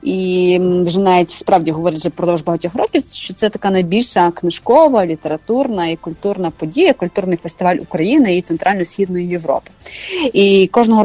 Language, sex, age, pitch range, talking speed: English, female, 30-49, 165-210 Hz, 140 wpm